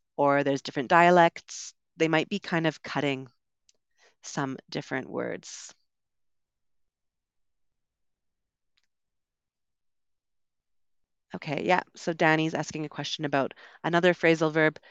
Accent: American